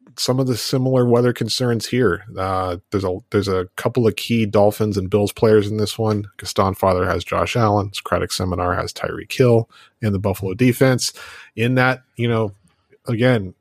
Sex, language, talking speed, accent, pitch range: male, English, 180 wpm, American, 105-130 Hz